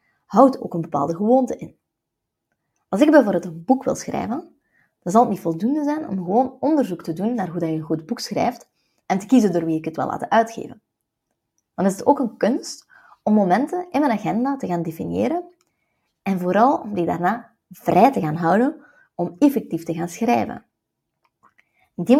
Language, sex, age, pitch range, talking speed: Dutch, female, 20-39, 175-260 Hz, 190 wpm